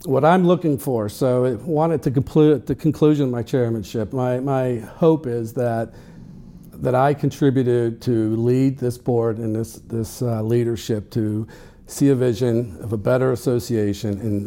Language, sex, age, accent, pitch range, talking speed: English, male, 50-69, American, 110-140 Hz, 165 wpm